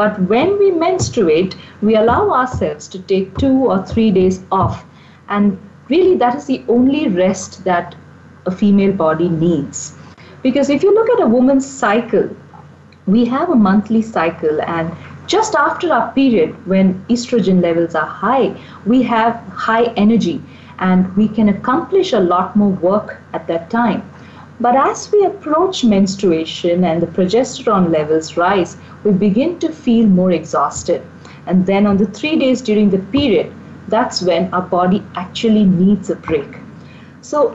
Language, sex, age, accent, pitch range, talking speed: English, female, 50-69, Indian, 185-270 Hz, 155 wpm